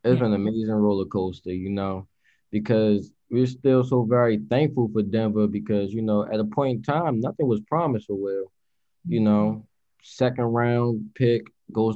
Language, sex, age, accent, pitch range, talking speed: English, male, 20-39, American, 105-120 Hz, 175 wpm